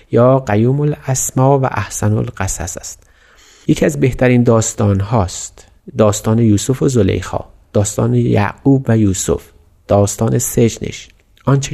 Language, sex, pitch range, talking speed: Persian, male, 105-130 Hz, 120 wpm